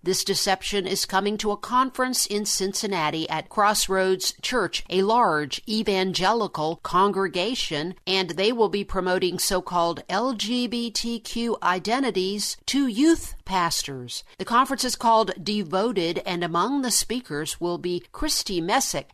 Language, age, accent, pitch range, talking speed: English, 50-69, American, 175-215 Hz, 125 wpm